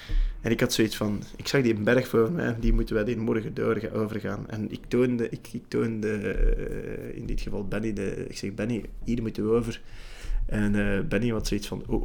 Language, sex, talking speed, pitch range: Dutch, male, 210 wpm, 105-120 Hz